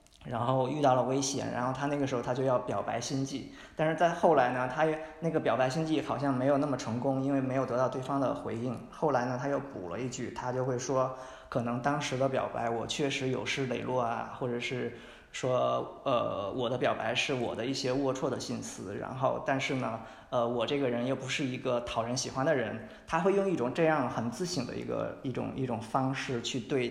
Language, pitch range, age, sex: Chinese, 125-155 Hz, 20-39, male